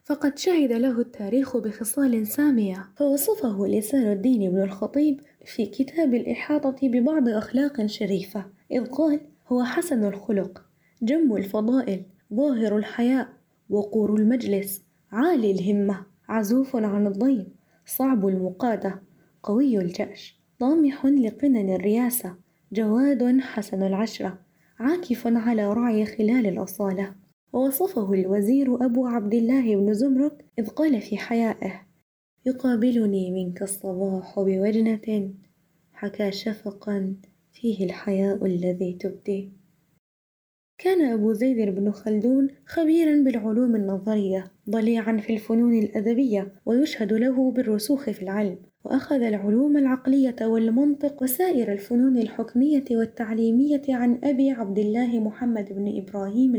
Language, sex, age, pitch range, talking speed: Arabic, female, 20-39, 200-260 Hz, 105 wpm